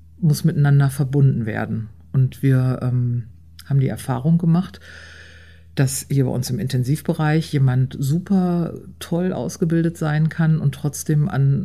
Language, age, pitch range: German, 50-69, 125-150 Hz